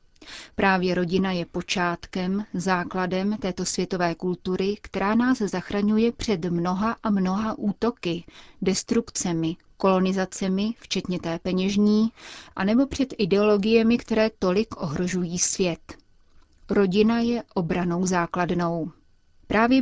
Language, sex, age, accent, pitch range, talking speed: Czech, female, 30-49, native, 180-215 Hz, 100 wpm